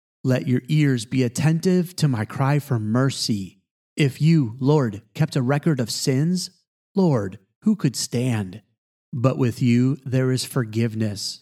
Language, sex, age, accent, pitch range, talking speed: English, male, 30-49, American, 120-155 Hz, 145 wpm